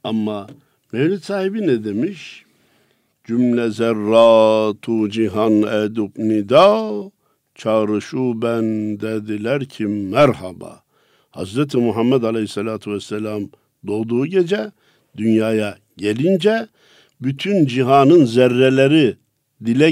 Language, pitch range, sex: Turkish, 105-150 Hz, male